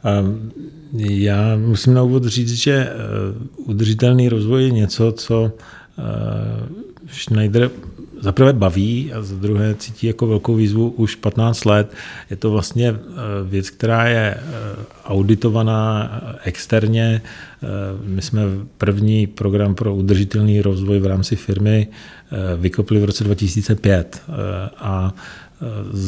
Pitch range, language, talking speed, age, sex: 100-115 Hz, Czech, 105 wpm, 40-59, male